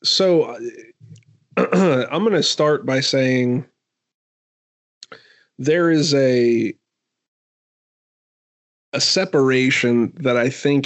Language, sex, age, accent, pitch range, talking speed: English, male, 30-49, American, 120-140 Hz, 85 wpm